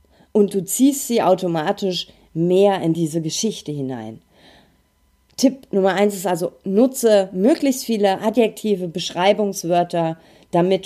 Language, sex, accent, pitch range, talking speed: German, female, German, 165-215 Hz, 115 wpm